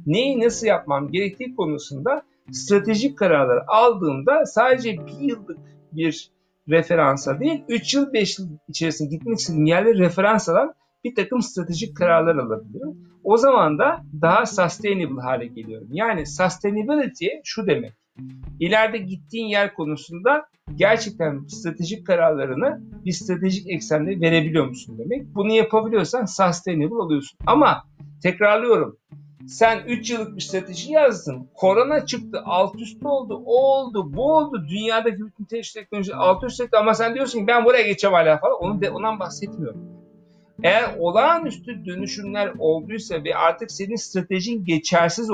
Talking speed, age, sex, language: 130 wpm, 60-79, male, Turkish